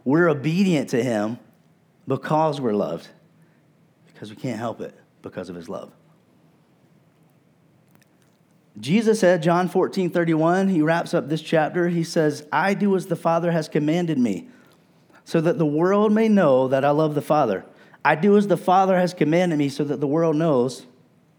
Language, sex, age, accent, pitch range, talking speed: English, male, 40-59, American, 135-175 Hz, 170 wpm